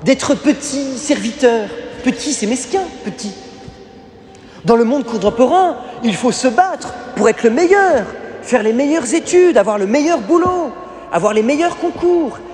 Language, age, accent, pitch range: French, 30-49, French, 225-305 Hz